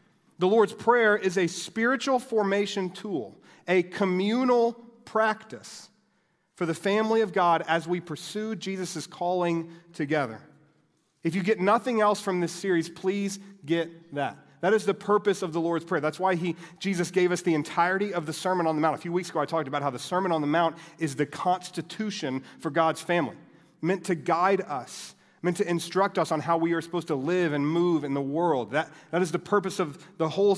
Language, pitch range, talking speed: English, 155-195 Hz, 200 wpm